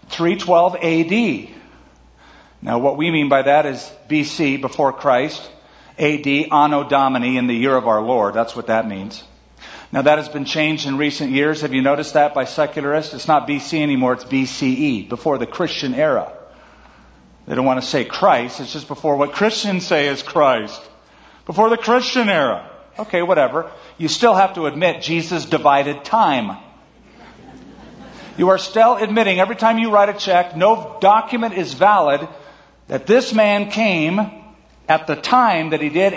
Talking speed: 170 wpm